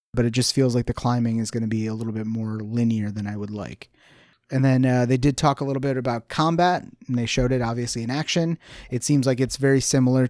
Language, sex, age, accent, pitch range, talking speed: English, male, 30-49, American, 115-135 Hz, 255 wpm